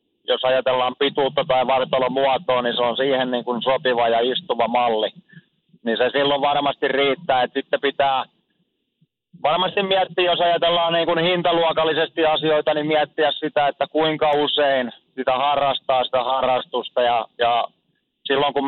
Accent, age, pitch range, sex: native, 30-49, 130-150 Hz, male